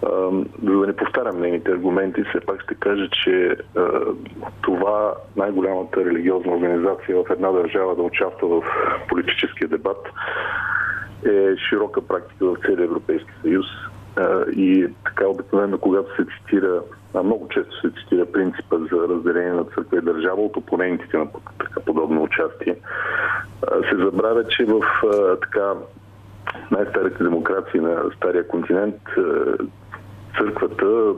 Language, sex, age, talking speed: Bulgarian, male, 40-59, 125 wpm